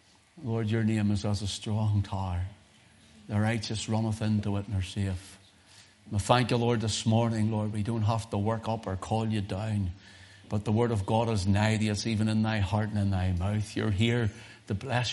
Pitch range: 95-110 Hz